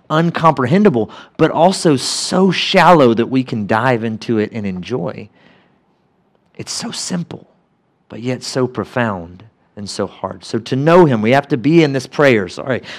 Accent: American